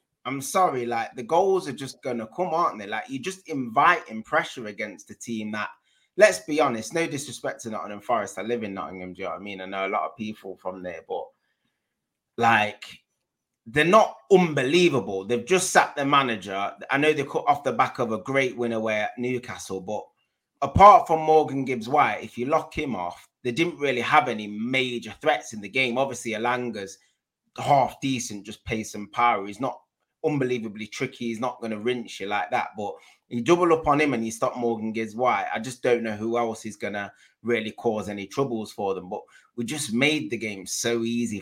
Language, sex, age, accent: English, male, 20-39, British